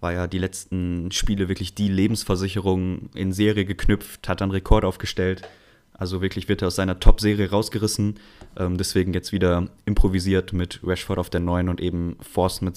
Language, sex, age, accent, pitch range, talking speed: German, male, 20-39, German, 95-110 Hz, 170 wpm